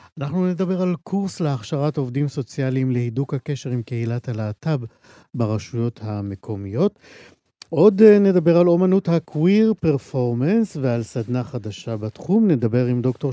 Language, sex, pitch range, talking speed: Hebrew, male, 120-160 Hz, 120 wpm